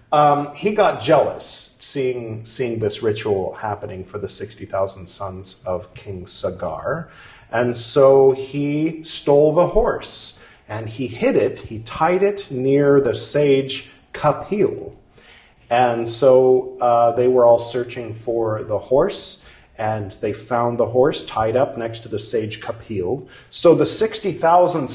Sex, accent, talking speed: male, American, 140 wpm